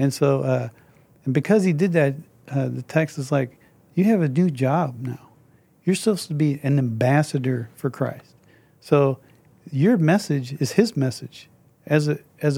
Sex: male